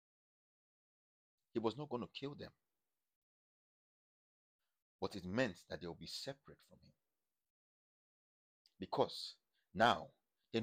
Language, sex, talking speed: English, male, 115 wpm